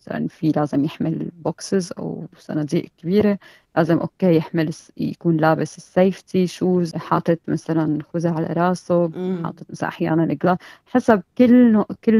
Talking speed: 130 wpm